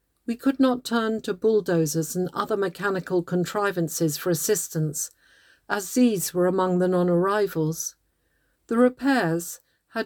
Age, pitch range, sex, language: 50-69, 175-225 Hz, female, English